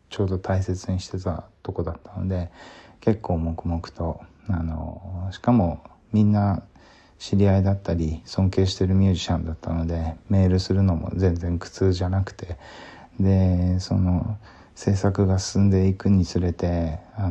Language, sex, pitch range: Japanese, male, 85-100 Hz